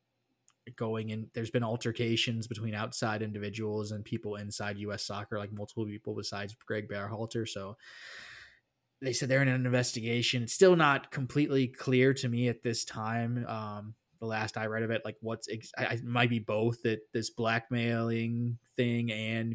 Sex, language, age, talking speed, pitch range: male, English, 20-39, 170 wpm, 110-125 Hz